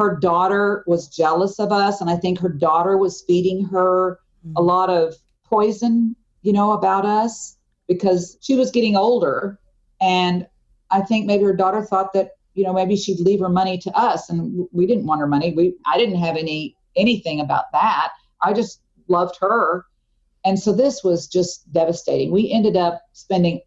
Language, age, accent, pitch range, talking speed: English, 50-69, American, 165-195 Hz, 185 wpm